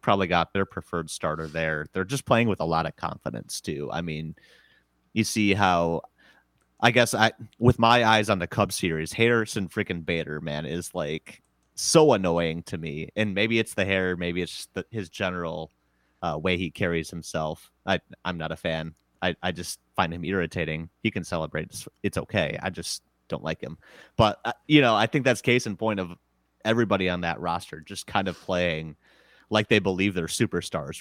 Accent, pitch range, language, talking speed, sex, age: American, 80-100 Hz, English, 195 wpm, male, 30-49